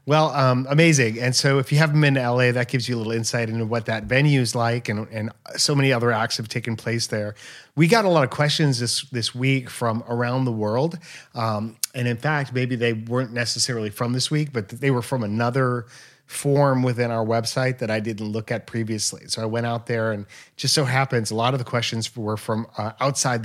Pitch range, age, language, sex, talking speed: 115-130 Hz, 30-49, English, male, 230 wpm